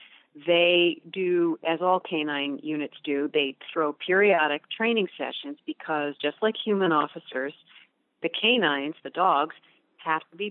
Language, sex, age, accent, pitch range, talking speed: English, female, 40-59, American, 150-185 Hz, 135 wpm